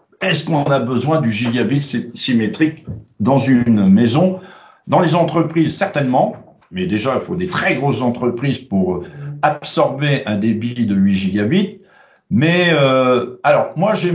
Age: 60-79